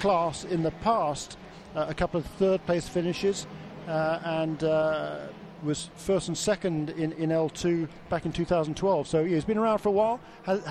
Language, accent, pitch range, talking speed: English, British, 155-185 Hz, 180 wpm